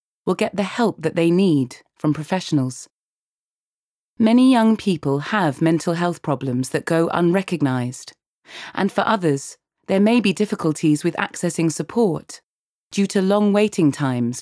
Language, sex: English, female